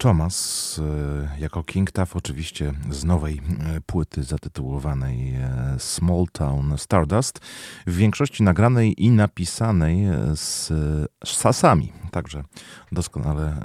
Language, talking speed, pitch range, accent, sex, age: Polish, 90 wpm, 75-90 Hz, native, male, 30-49